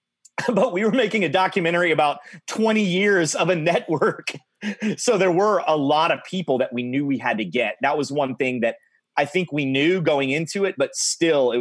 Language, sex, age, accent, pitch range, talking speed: English, male, 30-49, American, 120-185 Hz, 210 wpm